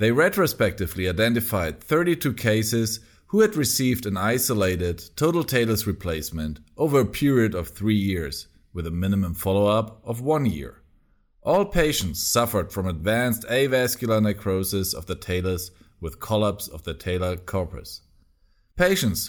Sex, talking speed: male, 135 wpm